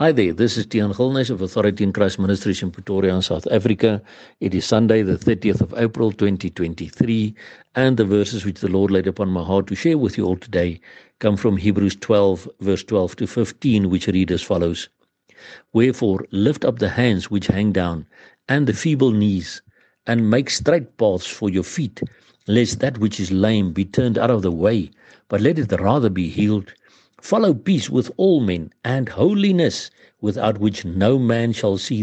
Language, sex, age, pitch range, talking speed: English, male, 60-79, 100-125 Hz, 185 wpm